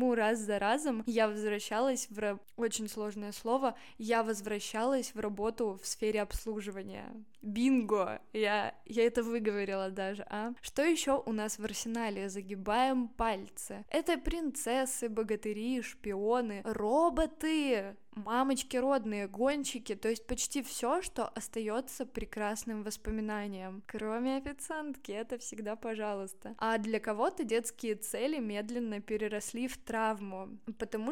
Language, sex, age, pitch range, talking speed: Russian, female, 10-29, 215-245 Hz, 120 wpm